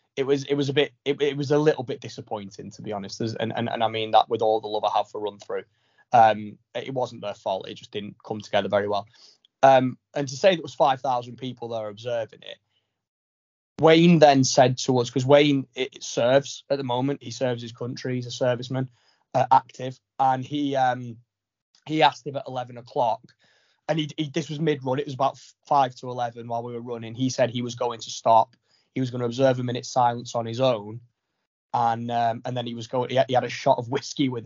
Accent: British